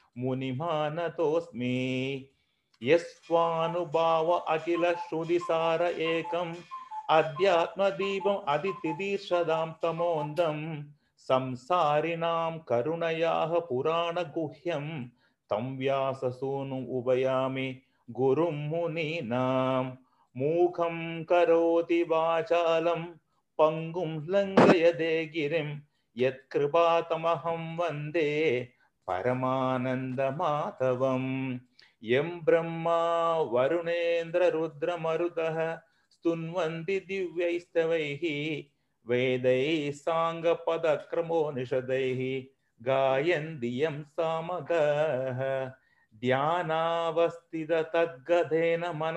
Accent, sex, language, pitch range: native, male, Tamil, 135-170 Hz